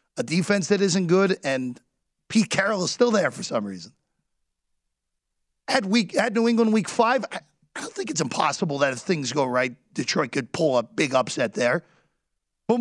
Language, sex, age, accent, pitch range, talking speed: English, male, 40-59, American, 155-220 Hz, 180 wpm